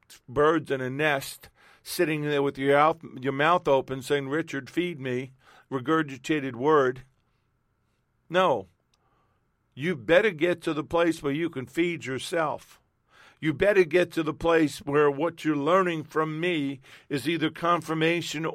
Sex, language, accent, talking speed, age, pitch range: male, English, American, 145 wpm, 50-69, 130-160 Hz